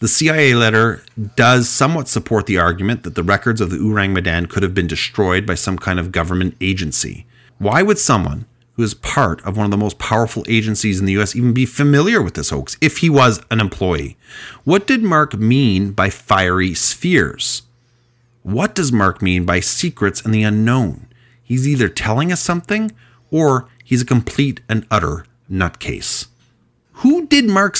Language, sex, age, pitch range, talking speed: English, male, 30-49, 105-145 Hz, 180 wpm